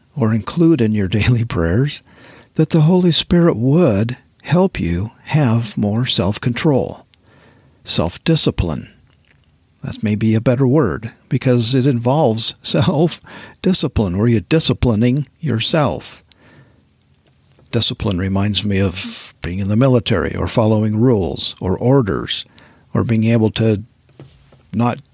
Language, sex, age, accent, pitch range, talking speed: English, male, 50-69, American, 110-145 Hz, 115 wpm